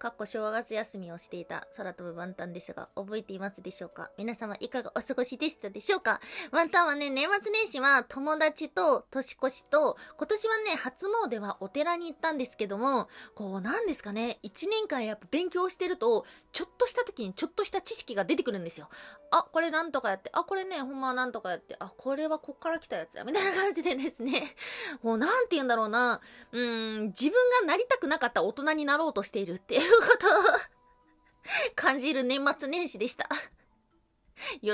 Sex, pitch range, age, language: female, 240-350 Hz, 20-39, Japanese